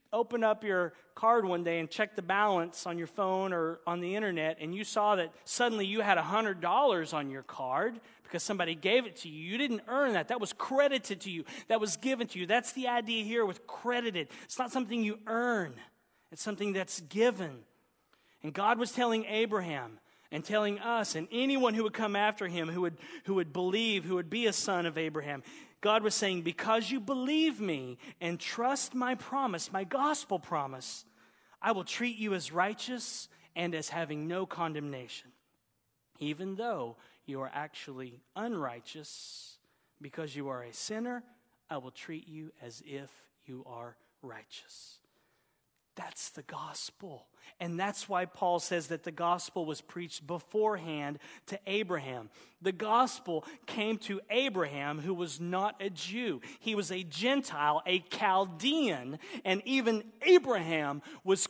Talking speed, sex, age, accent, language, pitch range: 165 wpm, male, 40-59, American, English, 160-225 Hz